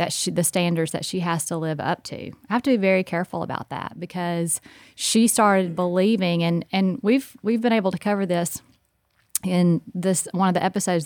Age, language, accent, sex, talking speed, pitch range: 30-49, English, American, female, 205 wpm, 170-200 Hz